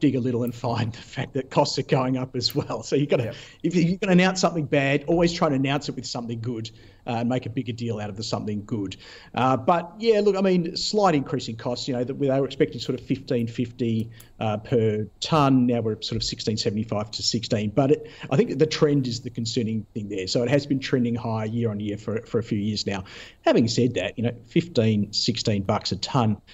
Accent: Australian